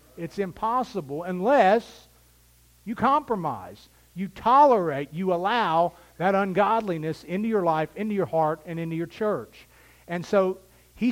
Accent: American